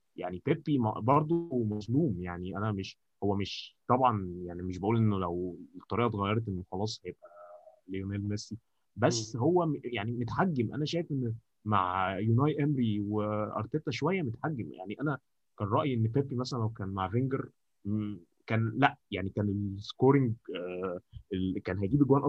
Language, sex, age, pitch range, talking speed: Arabic, male, 20-39, 100-125 Hz, 145 wpm